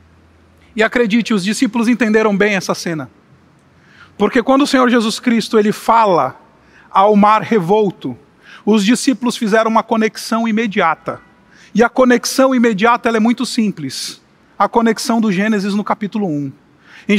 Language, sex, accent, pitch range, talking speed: Portuguese, male, Brazilian, 220-305 Hz, 145 wpm